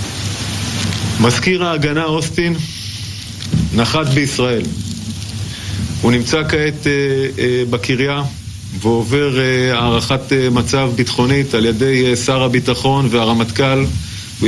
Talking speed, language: 100 wpm, Hebrew